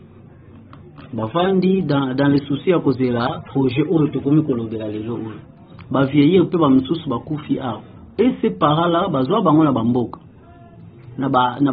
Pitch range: 120-170 Hz